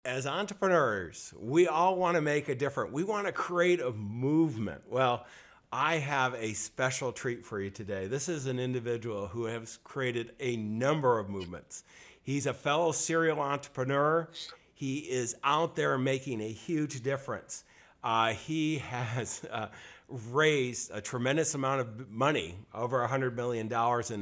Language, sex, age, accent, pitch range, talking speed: English, male, 50-69, American, 120-155 Hz, 155 wpm